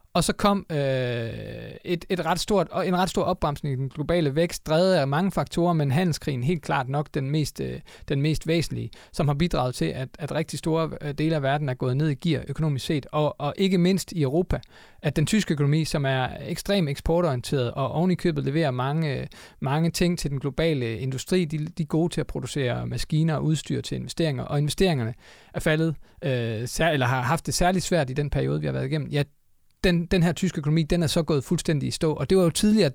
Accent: native